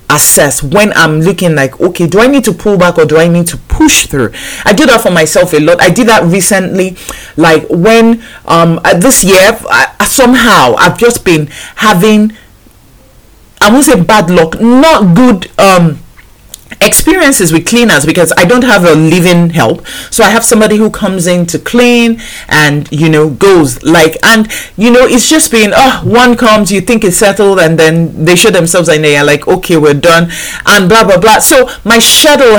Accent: Nigerian